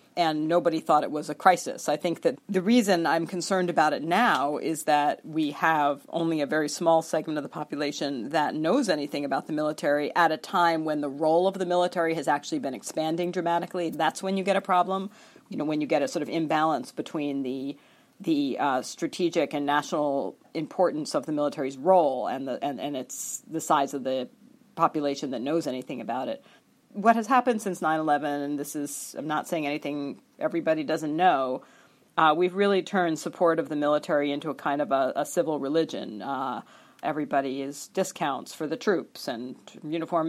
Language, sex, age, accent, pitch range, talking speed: English, female, 40-59, American, 150-180 Hz, 195 wpm